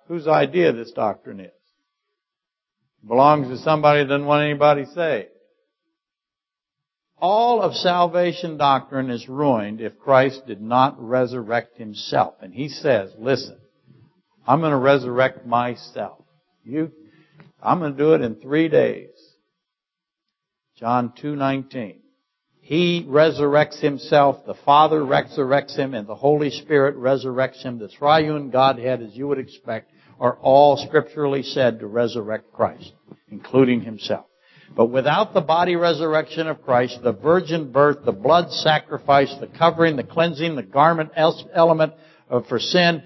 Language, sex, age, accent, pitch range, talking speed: English, male, 60-79, American, 135-170 Hz, 135 wpm